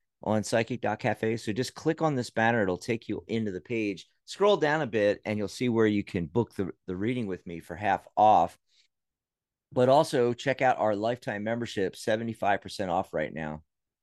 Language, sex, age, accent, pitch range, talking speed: English, male, 50-69, American, 100-130 Hz, 190 wpm